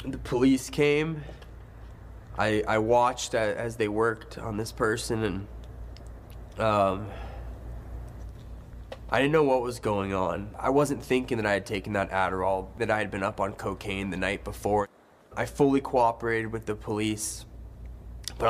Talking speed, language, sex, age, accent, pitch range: 150 wpm, English, male, 20-39, American, 105-130 Hz